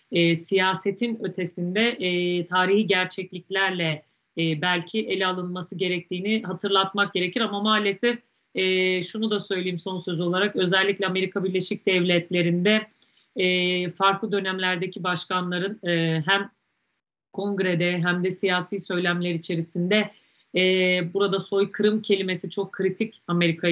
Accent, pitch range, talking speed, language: native, 180-200 Hz, 115 wpm, Turkish